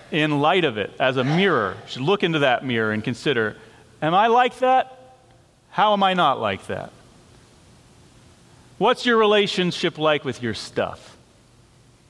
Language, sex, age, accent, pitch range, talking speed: English, male, 40-59, American, 115-150 Hz, 160 wpm